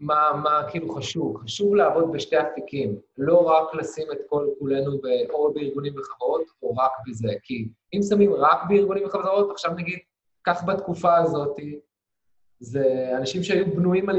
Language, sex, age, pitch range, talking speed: Hebrew, male, 20-39, 145-205 Hz, 155 wpm